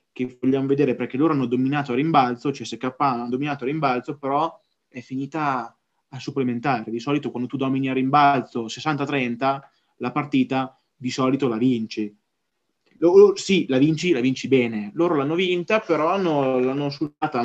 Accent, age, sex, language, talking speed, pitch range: native, 20-39, male, Italian, 160 wpm, 125-155 Hz